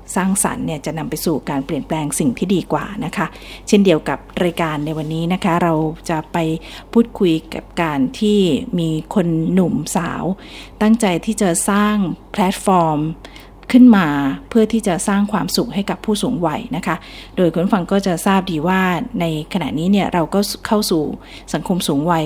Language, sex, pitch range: Thai, female, 165-215 Hz